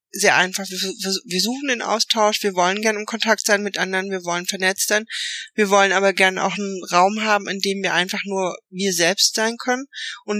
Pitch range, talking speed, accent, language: 190-220 Hz, 215 wpm, German, German